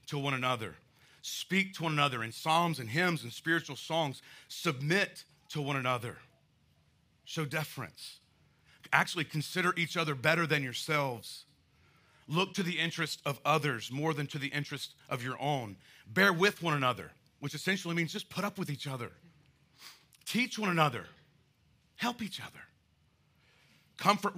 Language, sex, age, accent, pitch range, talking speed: English, male, 40-59, American, 120-160 Hz, 150 wpm